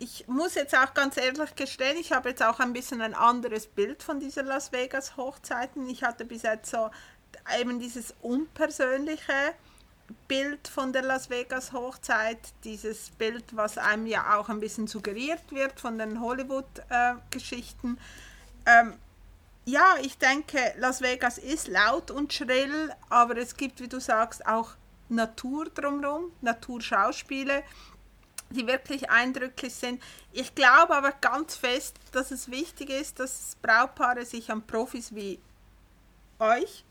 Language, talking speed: German, 145 wpm